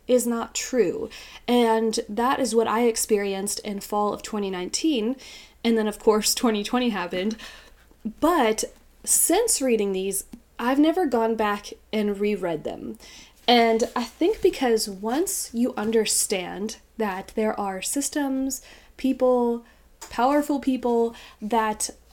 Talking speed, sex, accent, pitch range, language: 120 wpm, female, American, 210-255 Hz, English